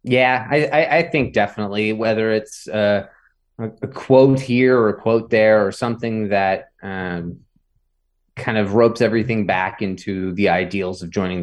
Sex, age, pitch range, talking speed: male, 20-39, 95-115 Hz, 165 wpm